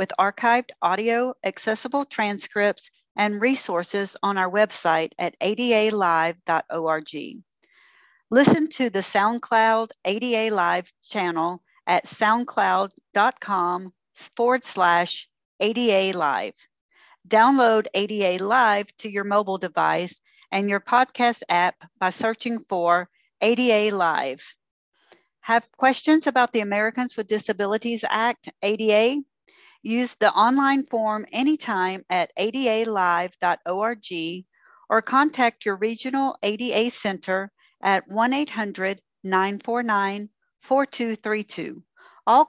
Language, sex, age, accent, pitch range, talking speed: English, female, 50-69, American, 190-235 Hz, 95 wpm